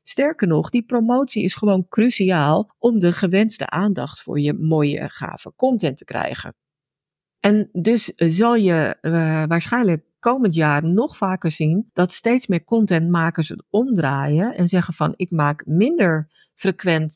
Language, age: Dutch, 40-59